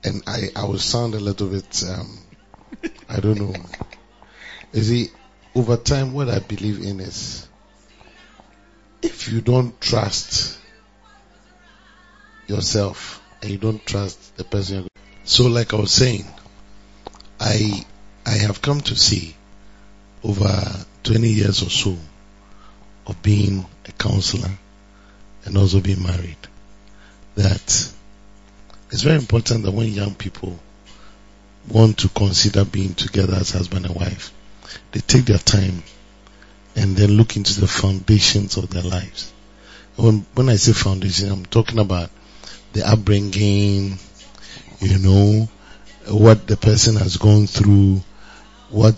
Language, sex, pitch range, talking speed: English, male, 100-110 Hz, 130 wpm